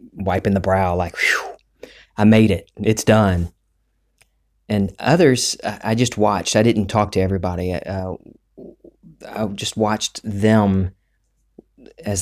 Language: English